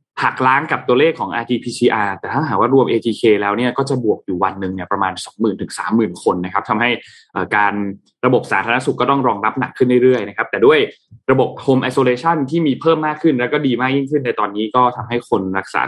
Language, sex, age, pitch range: Thai, male, 20-39, 110-145 Hz